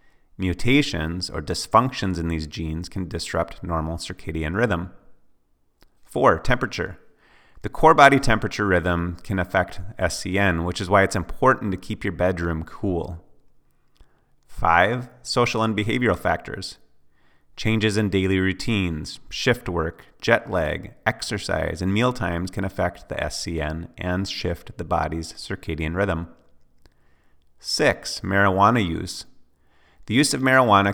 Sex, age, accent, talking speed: male, 30-49, American, 125 wpm